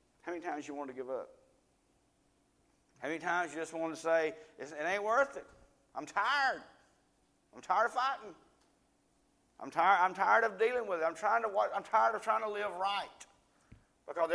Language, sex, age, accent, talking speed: English, male, 40-59, American, 165 wpm